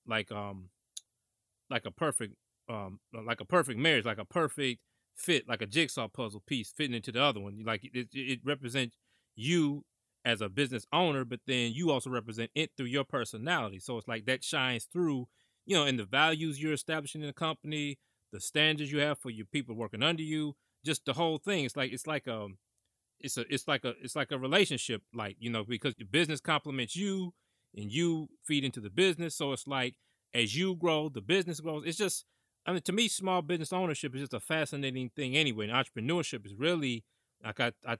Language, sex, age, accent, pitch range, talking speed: English, male, 30-49, American, 120-155 Hz, 210 wpm